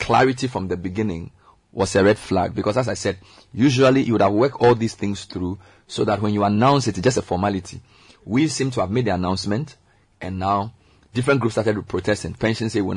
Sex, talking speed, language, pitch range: male, 225 wpm, English, 95-110 Hz